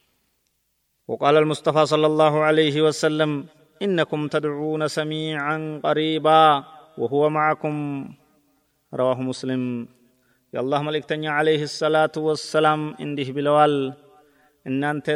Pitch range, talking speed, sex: 135-155 Hz, 100 wpm, male